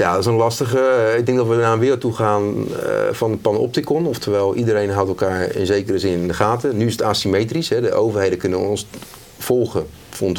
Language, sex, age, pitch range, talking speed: Dutch, male, 40-59, 90-120 Hz, 220 wpm